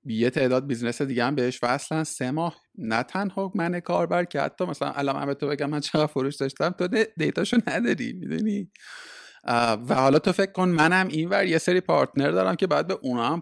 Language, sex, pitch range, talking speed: Persian, male, 125-175 Hz, 195 wpm